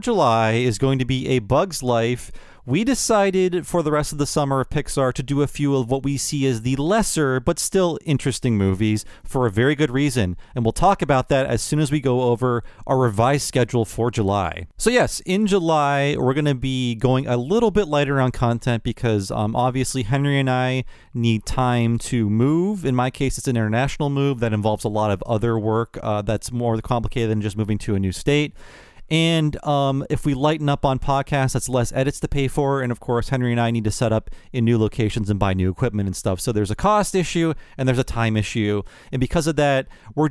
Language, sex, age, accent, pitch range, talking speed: English, male, 40-59, American, 115-150 Hz, 225 wpm